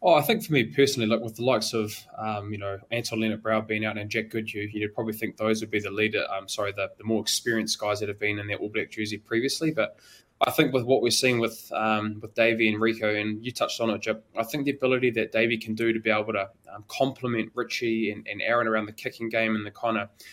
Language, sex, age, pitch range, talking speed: English, male, 20-39, 105-120 Hz, 265 wpm